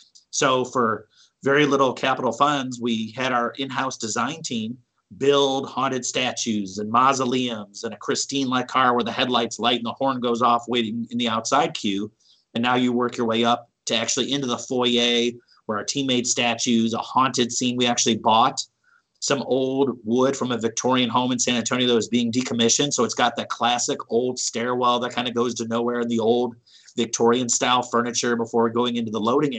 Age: 30-49